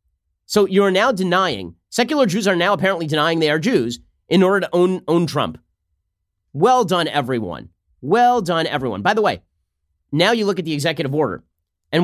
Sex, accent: male, American